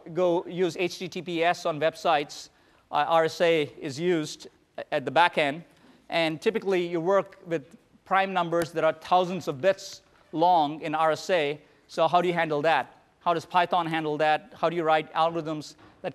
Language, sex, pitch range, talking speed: English, male, 150-175 Hz, 165 wpm